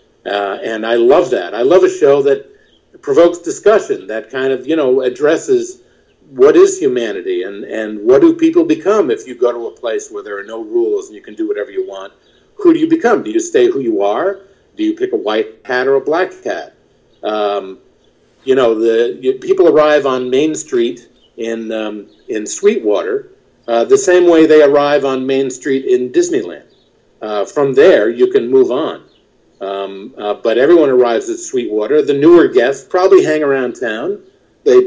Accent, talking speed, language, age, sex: American, 195 wpm, English, 50-69, male